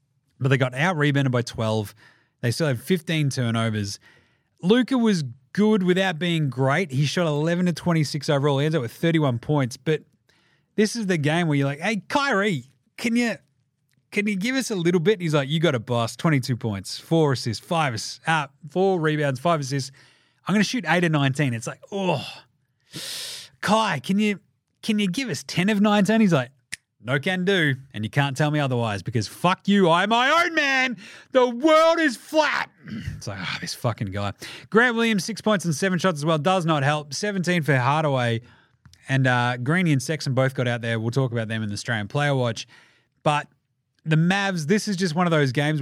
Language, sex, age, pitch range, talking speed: English, male, 30-49, 130-180 Hz, 205 wpm